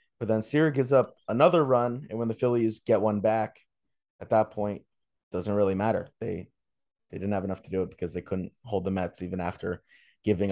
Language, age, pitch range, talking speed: English, 20-39, 100-125 Hz, 210 wpm